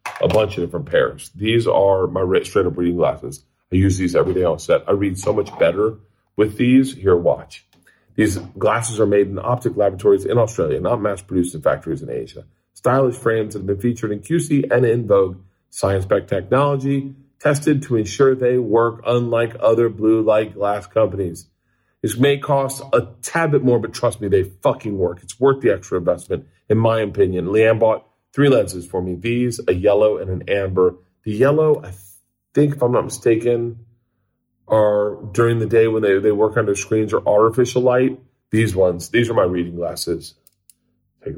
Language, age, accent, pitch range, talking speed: English, 40-59, American, 100-125 Hz, 185 wpm